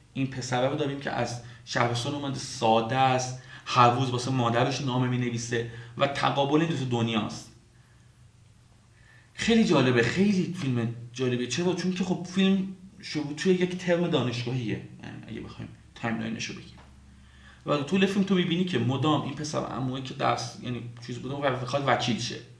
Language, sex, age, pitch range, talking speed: Persian, male, 30-49, 120-170 Hz, 145 wpm